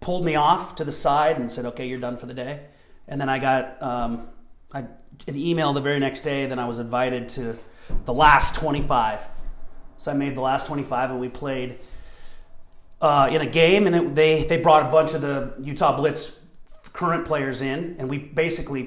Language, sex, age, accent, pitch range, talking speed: English, male, 30-49, American, 120-145 Hz, 205 wpm